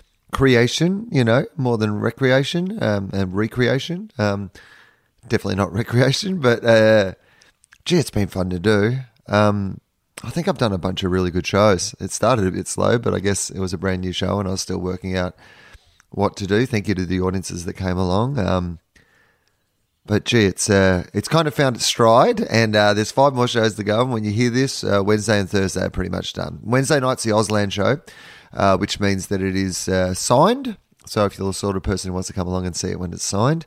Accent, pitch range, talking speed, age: Australian, 95-120 Hz, 225 wpm, 30-49